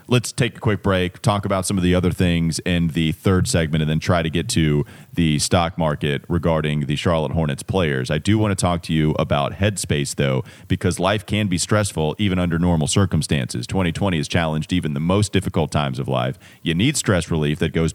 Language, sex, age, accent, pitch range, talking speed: English, male, 30-49, American, 80-100 Hz, 215 wpm